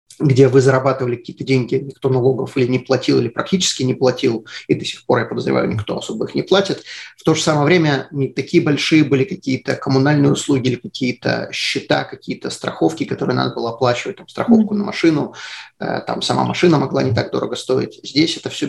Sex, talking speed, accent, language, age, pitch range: male, 195 wpm, native, Russian, 30-49, 125-145 Hz